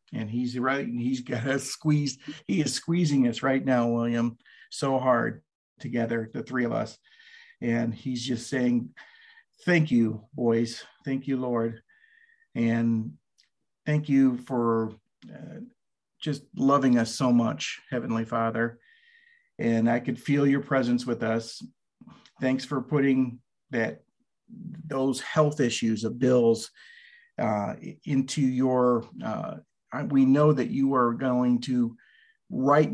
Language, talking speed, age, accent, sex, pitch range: English, 135 wpm, 50-69, American, male, 120-145 Hz